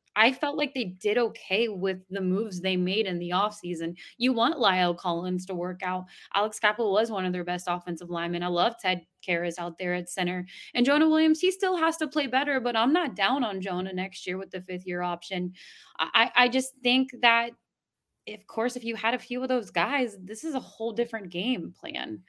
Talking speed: 220 wpm